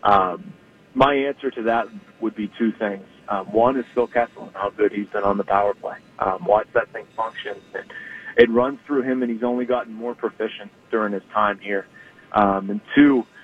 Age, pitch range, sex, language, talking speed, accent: 30-49, 110-145 Hz, male, English, 205 wpm, American